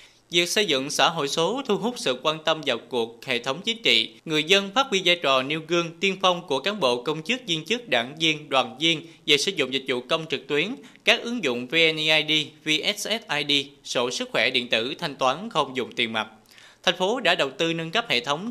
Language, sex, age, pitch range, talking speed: Vietnamese, male, 20-39, 135-190 Hz, 230 wpm